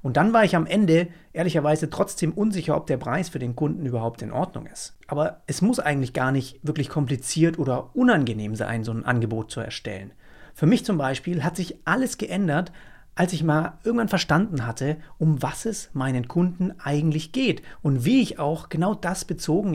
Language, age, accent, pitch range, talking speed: German, 40-59, German, 145-185 Hz, 190 wpm